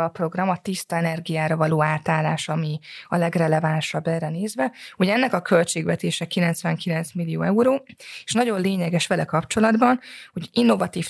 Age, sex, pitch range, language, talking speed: 20-39, female, 165-195 Hz, Hungarian, 140 wpm